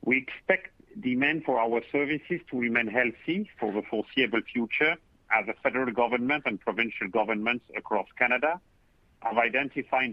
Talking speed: 140 wpm